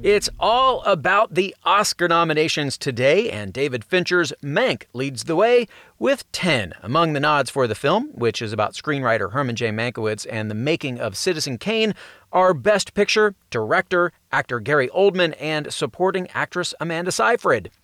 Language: English